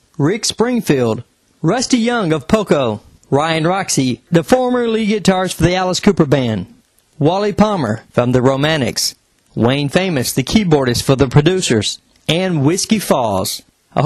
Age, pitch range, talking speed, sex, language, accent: 40-59, 130-185 Hz, 140 wpm, male, English, American